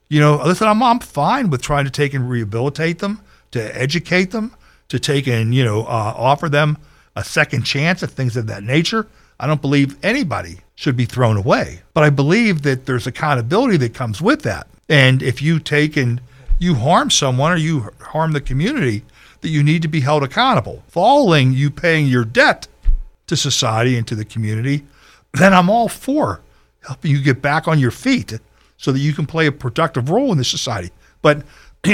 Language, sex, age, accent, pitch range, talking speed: English, male, 60-79, American, 130-165 Hz, 195 wpm